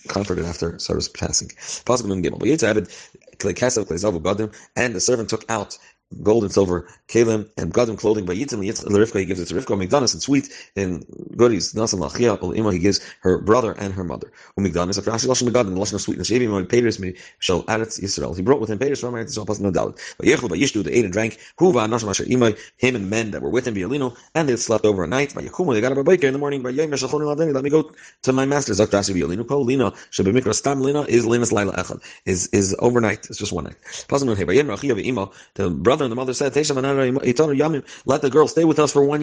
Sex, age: male, 40-59